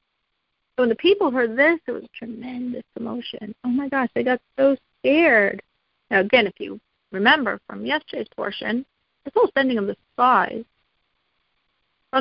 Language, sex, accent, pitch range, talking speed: English, female, American, 205-290 Hz, 155 wpm